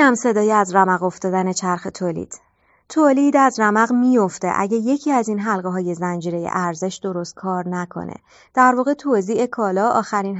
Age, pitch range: 30-49, 180-230 Hz